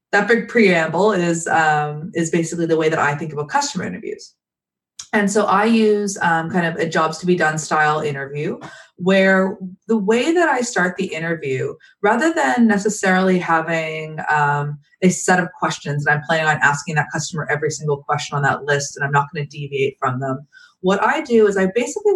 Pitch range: 155-215 Hz